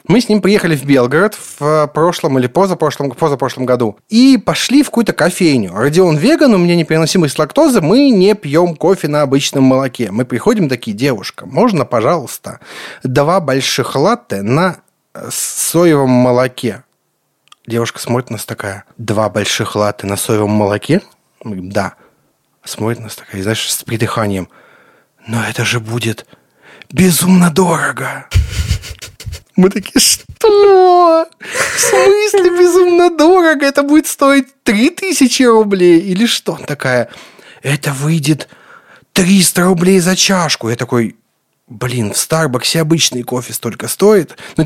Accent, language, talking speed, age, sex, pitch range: native, Russian, 135 wpm, 30-49, male, 125-210 Hz